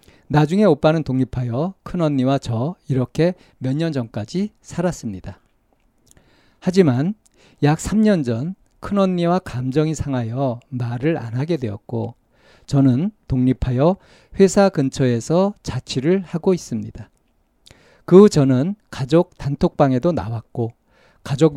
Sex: male